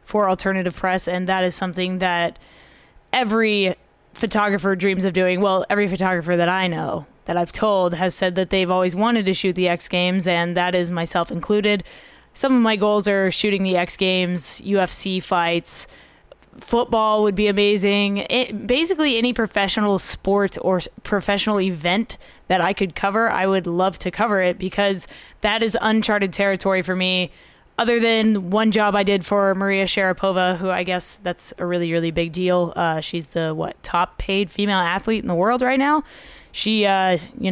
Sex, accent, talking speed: female, American, 180 wpm